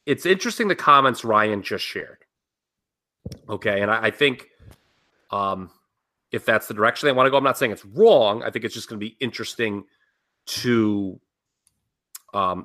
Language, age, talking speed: English, 30-49, 170 wpm